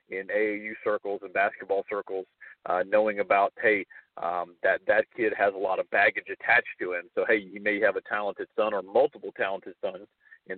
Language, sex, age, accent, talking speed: English, male, 40-59, American, 200 wpm